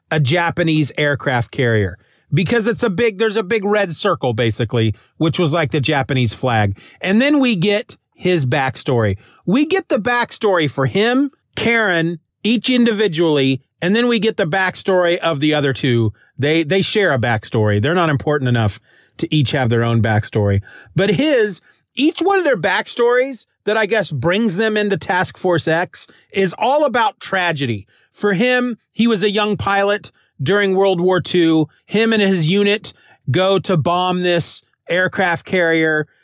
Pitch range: 140-210 Hz